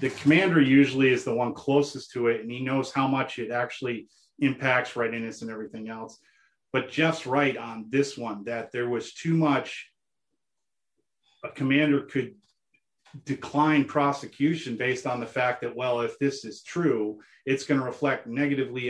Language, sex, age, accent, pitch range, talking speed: English, male, 40-59, American, 120-145 Hz, 165 wpm